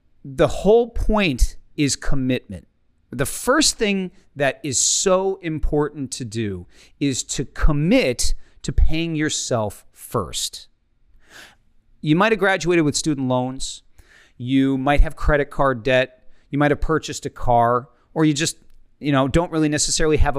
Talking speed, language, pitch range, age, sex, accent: 145 wpm, English, 125-160 Hz, 40-59, male, American